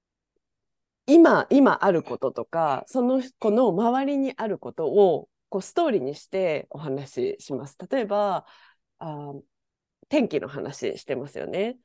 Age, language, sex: 20-39, Japanese, female